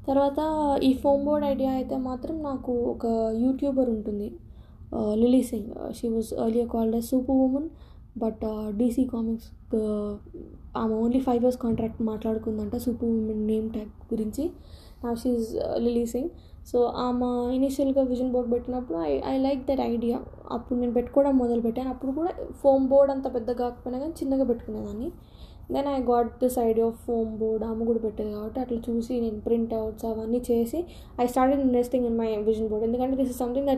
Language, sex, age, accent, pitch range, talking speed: Telugu, female, 10-29, native, 225-255 Hz, 165 wpm